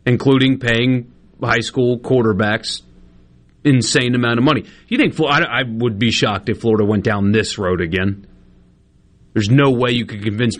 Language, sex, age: English, male, 30-49